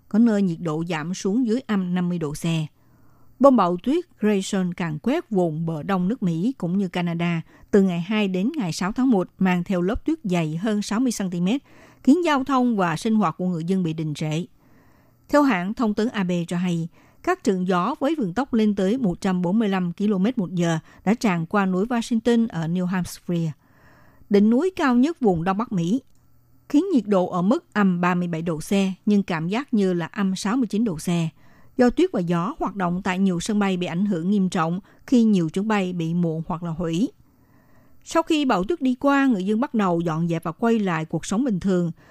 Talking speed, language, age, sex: 210 wpm, Vietnamese, 60-79, female